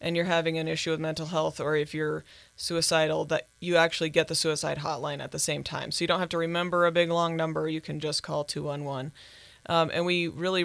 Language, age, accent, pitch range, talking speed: English, 20-39, American, 155-175 Hz, 250 wpm